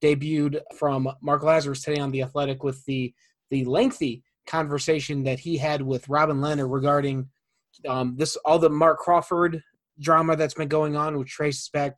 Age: 20-39